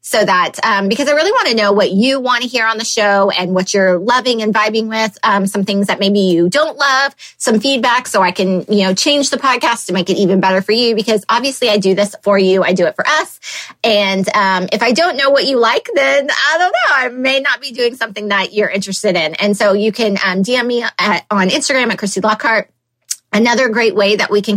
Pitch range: 185-225 Hz